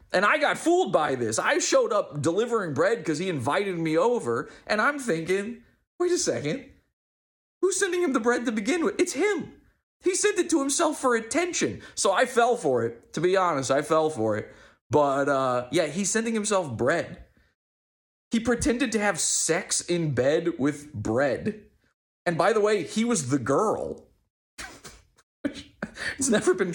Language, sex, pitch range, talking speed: English, male, 130-215 Hz, 175 wpm